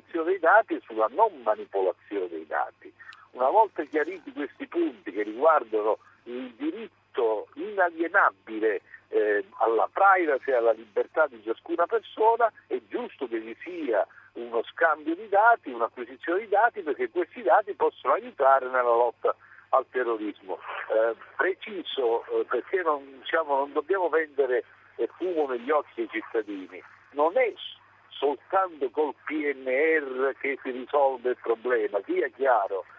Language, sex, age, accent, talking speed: Italian, male, 60-79, native, 130 wpm